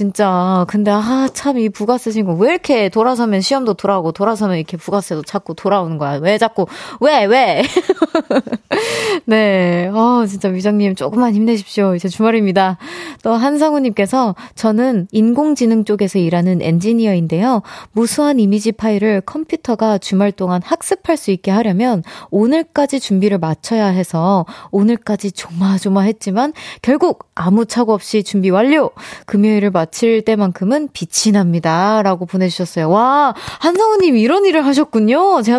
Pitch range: 190-255 Hz